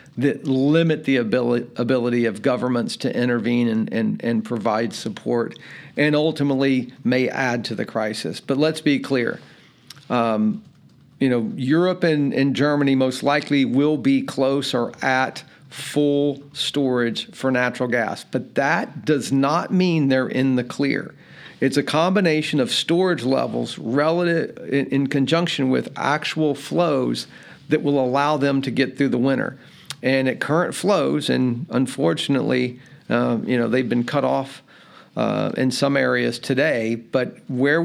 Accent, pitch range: American, 130-150 Hz